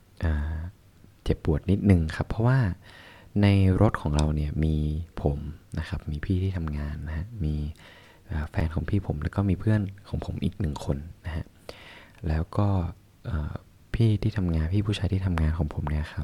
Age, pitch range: 20-39, 80-100 Hz